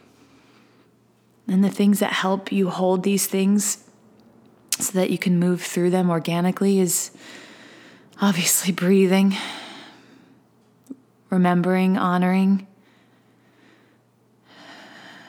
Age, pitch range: 20-39, 175-200 Hz